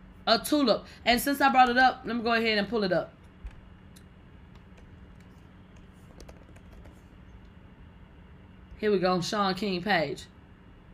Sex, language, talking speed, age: female, English, 120 wpm, 20-39